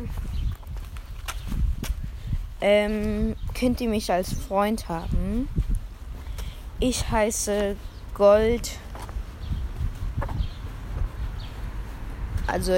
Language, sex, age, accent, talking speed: German, female, 20-39, German, 50 wpm